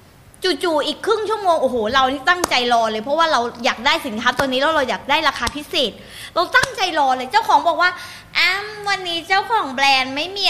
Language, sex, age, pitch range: Thai, female, 20-39, 275-370 Hz